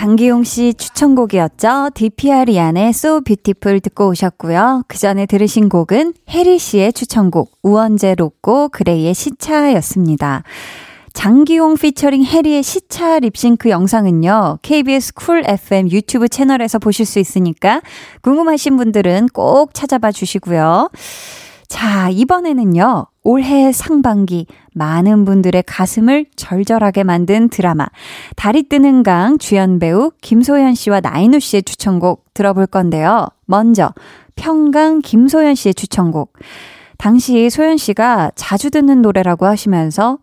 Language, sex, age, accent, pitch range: Korean, female, 20-39, native, 190-270 Hz